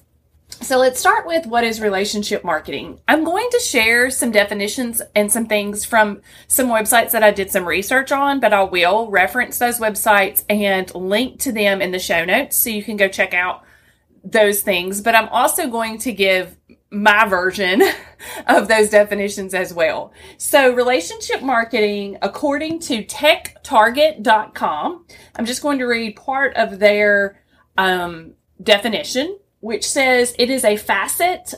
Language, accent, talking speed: English, American, 160 wpm